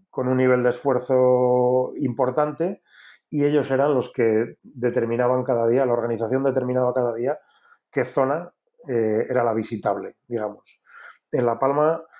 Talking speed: 145 wpm